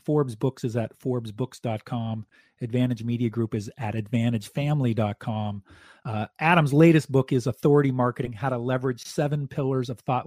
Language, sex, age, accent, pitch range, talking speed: English, male, 40-59, American, 120-155 Hz, 140 wpm